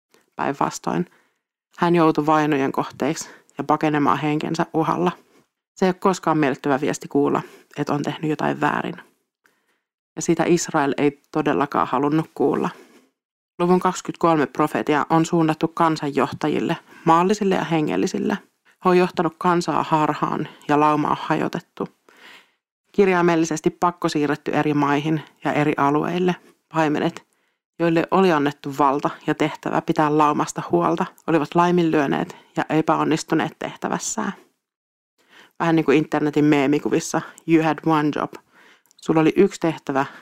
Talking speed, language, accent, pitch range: 120 wpm, Finnish, native, 150-170 Hz